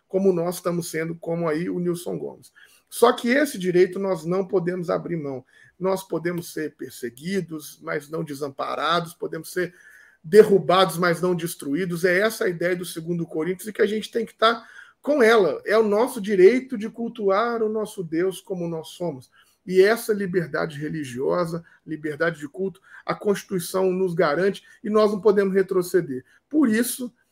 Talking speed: 170 wpm